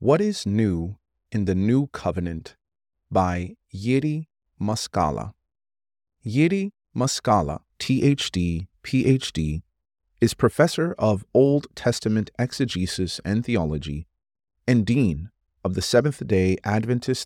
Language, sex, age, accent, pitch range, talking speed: English, male, 30-49, American, 80-115 Hz, 95 wpm